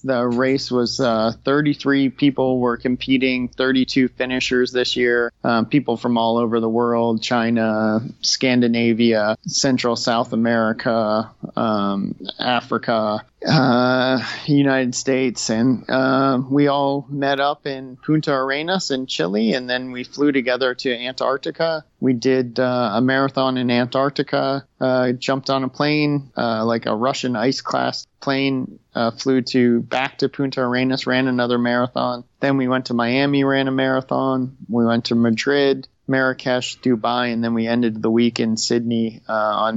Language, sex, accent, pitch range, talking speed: English, male, American, 115-130 Hz, 150 wpm